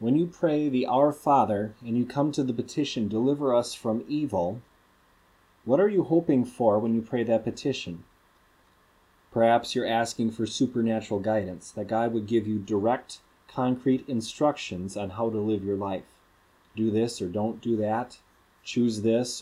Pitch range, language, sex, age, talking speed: 100-125 Hz, English, male, 30-49, 165 wpm